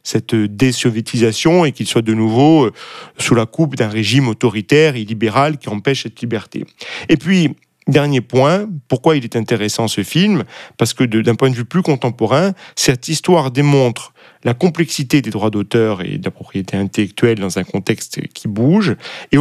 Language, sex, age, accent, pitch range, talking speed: French, male, 40-59, French, 110-145 Hz, 175 wpm